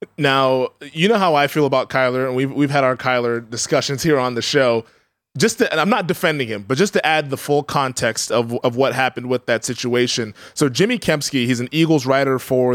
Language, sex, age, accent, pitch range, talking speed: English, male, 20-39, American, 125-155 Hz, 225 wpm